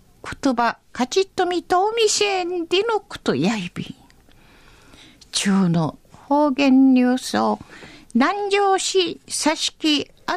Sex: female